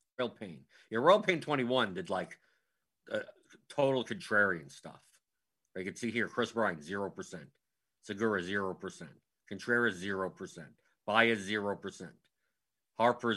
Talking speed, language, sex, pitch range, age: 155 wpm, English, male, 100-120 Hz, 50-69